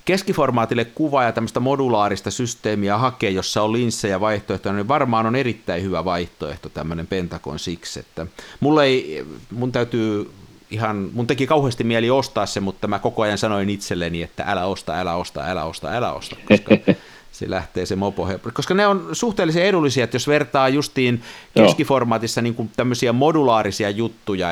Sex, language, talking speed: male, Finnish, 165 wpm